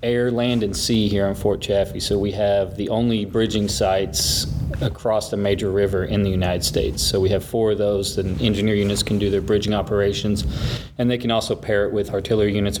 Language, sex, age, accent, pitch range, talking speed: English, male, 30-49, American, 95-105 Hz, 215 wpm